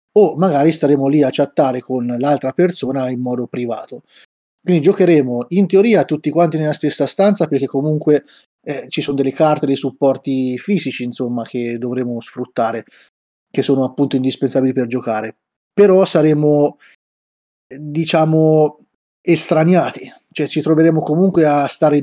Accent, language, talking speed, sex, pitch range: native, Italian, 140 wpm, male, 130-150 Hz